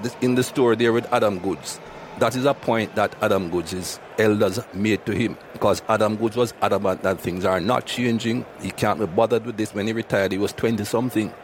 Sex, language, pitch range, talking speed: male, English, 95-125 Hz, 210 wpm